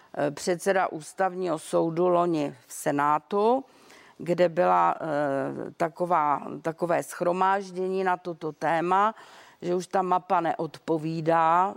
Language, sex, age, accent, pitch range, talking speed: Czech, female, 40-59, native, 175-205 Hz, 95 wpm